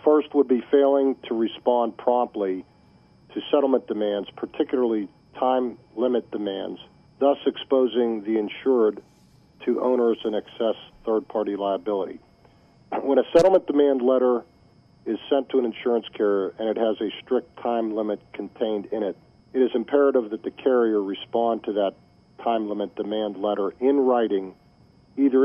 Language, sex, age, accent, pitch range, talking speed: English, male, 50-69, American, 105-130 Hz, 145 wpm